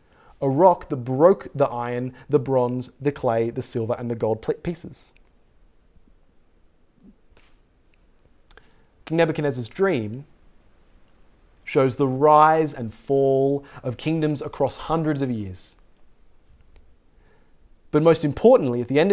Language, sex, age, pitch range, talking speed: English, male, 30-49, 115-160 Hz, 115 wpm